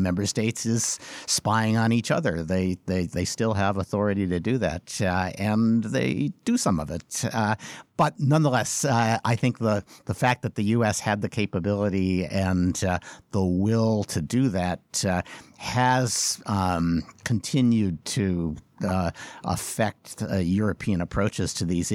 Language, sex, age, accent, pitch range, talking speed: English, male, 50-69, American, 95-130 Hz, 155 wpm